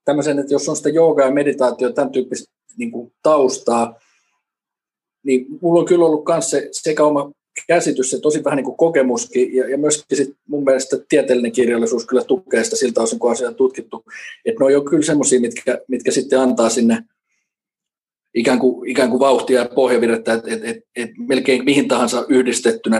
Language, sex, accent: Finnish, male, native